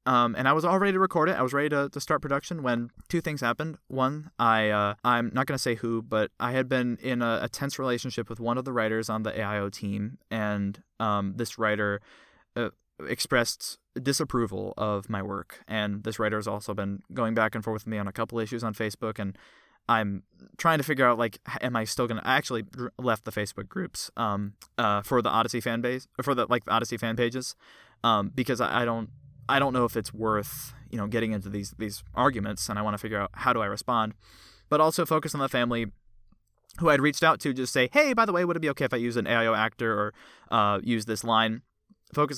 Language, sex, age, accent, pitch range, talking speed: English, male, 20-39, American, 105-130 Hz, 235 wpm